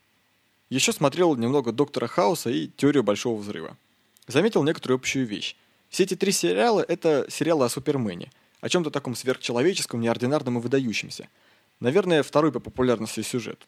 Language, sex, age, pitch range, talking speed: Russian, male, 20-39, 115-155 Hz, 150 wpm